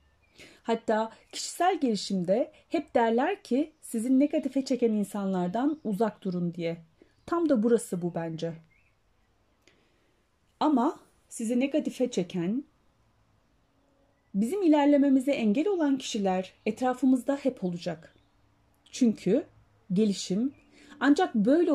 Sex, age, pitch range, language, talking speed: female, 30-49, 185-275 Hz, Turkish, 95 wpm